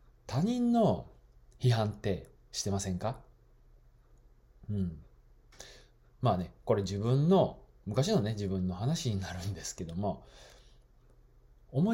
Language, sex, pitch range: Japanese, male, 95-140 Hz